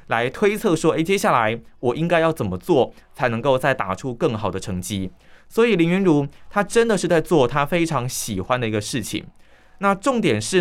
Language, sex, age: Chinese, male, 20-39